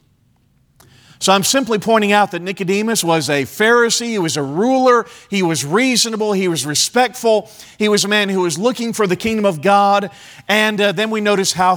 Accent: American